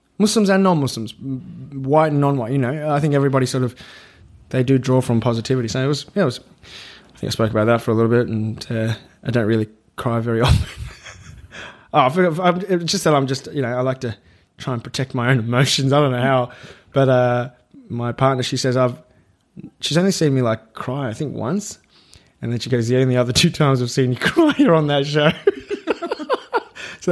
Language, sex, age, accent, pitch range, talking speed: English, male, 20-39, Australian, 120-150 Hz, 225 wpm